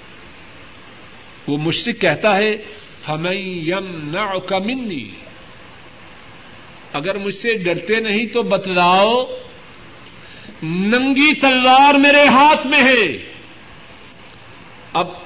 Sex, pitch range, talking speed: male, 165-235 Hz, 80 wpm